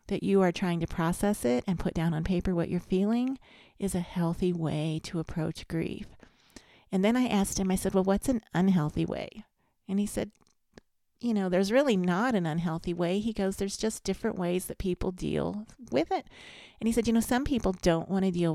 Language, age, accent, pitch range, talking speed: English, 40-59, American, 170-205 Hz, 215 wpm